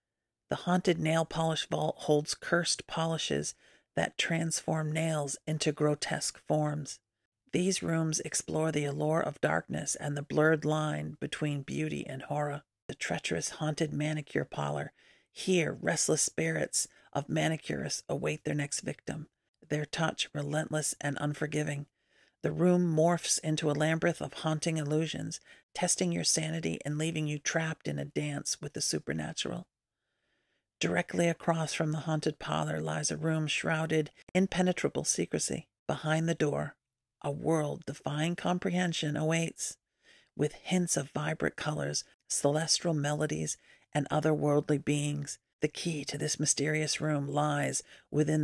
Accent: American